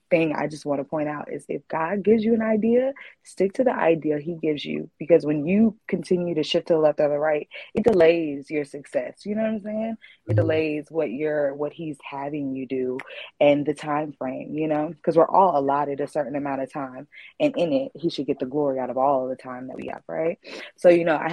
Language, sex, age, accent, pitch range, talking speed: English, female, 20-39, American, 145-175 Hz, 250 wpm